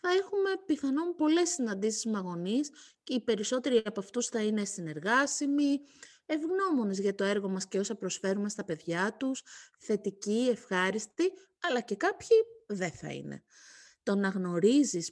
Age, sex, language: 30-49, female, Greek